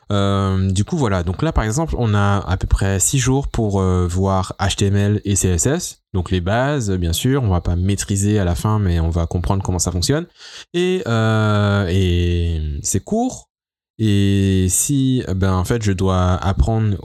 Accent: French